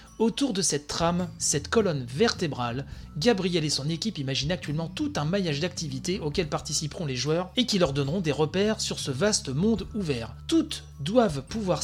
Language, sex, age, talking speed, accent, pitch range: French, male, 30-49, 175 wpm, French, 145-210 Hz